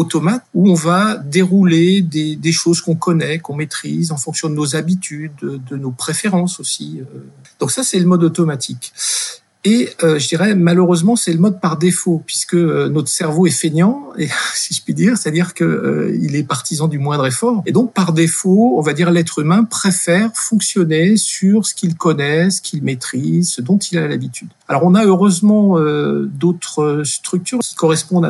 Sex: male